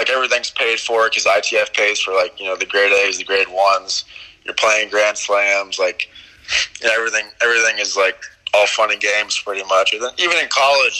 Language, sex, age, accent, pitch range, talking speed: English, male, 20-39, American, 95-110 Hz, 200 wpm